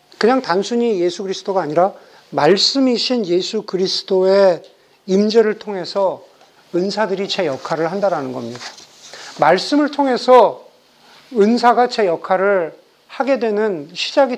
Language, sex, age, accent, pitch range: Korean, male, 50-69, native, 175-240 Hz